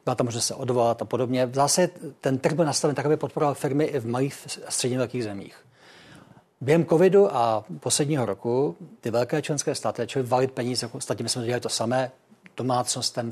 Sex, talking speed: male, 190 wpm